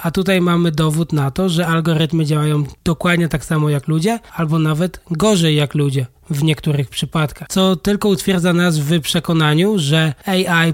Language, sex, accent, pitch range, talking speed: Polish, male, native, 155-175 Hz, 170 wpm